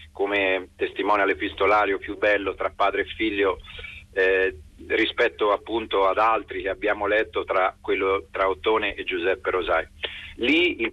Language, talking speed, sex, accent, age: Italian, 135 wpm, male, native, 40-59